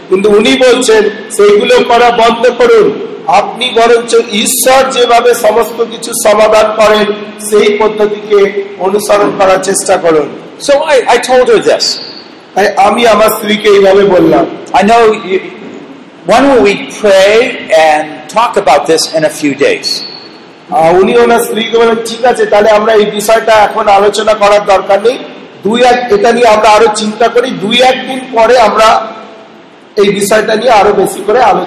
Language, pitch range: Bengali, 205-245 Hz